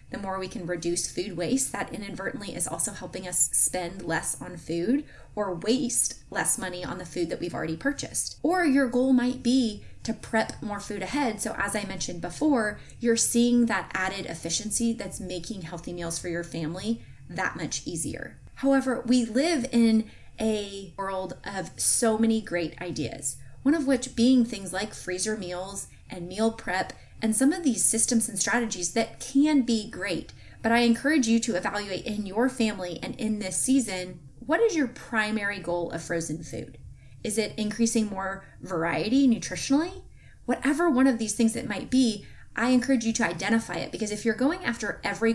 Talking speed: 185 wpm